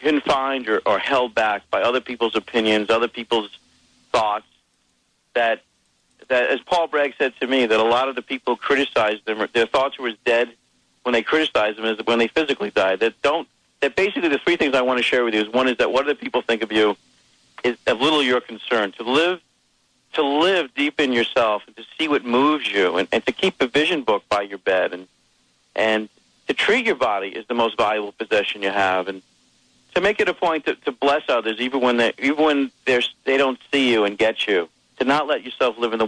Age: 50-69